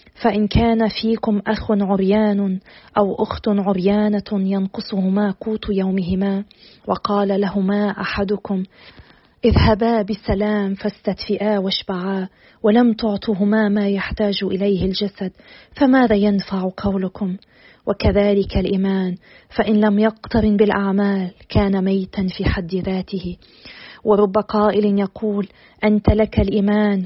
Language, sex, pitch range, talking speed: Arabic, female, 190-210 Hz, 100 wpm